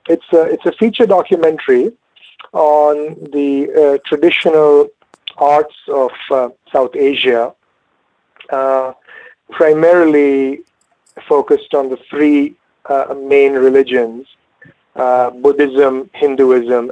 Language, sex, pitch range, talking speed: English, male, 130-160 Hz, 95 wpm